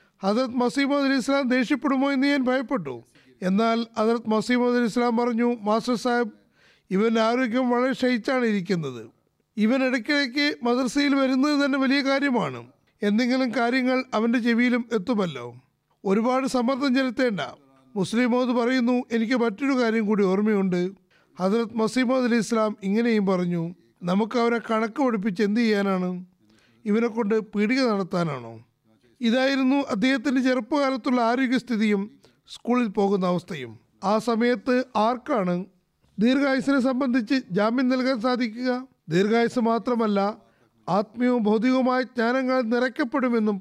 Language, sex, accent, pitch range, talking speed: Malayalam, male, native, 200-255 Hz, 105 wpm